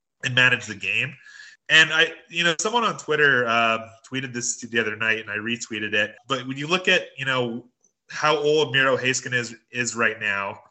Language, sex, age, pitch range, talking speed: English, male, 30-49, 120-140 Hz, 200 wpm